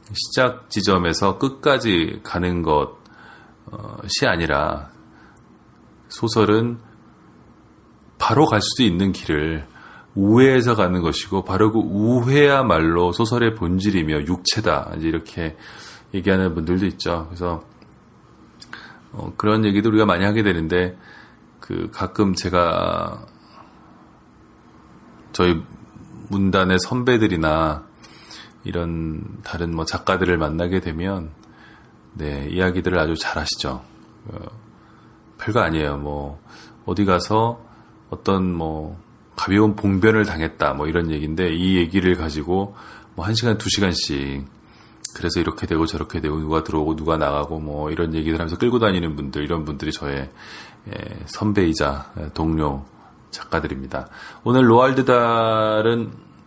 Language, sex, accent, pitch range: Korean, male, native, 80-110 Hz